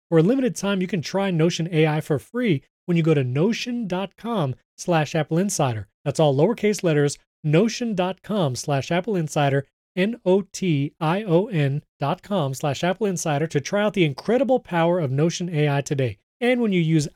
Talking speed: 145 wpm